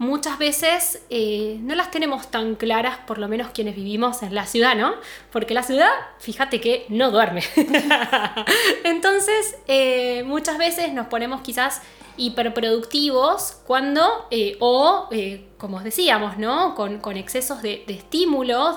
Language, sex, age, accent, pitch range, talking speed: Spanish, female, 10-29, Argentinian, 210-290 Hz, 145 wpm